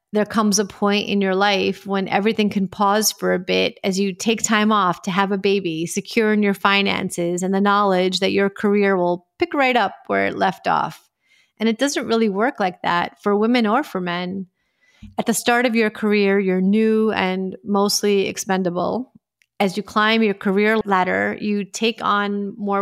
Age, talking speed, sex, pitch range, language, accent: 30-49, 195 wpm, female, 190-215 Hz, English, American